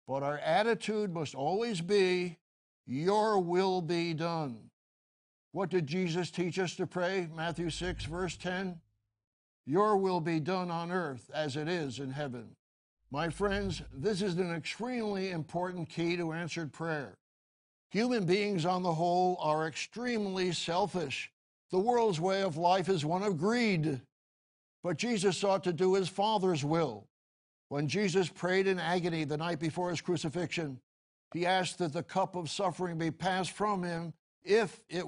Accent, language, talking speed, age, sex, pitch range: American, English, 155 wpm, 60-79, male, 150-185 Hz